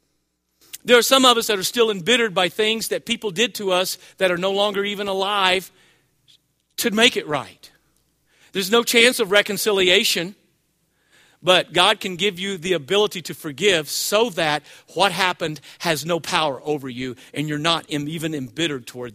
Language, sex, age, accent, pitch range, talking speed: English, male, 40-59, American, 150-210 Hz, 170 wpm